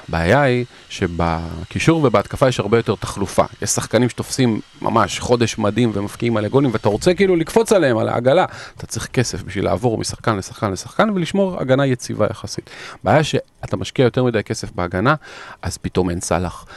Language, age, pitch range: Hebrew, 40-59, 105-140 Hz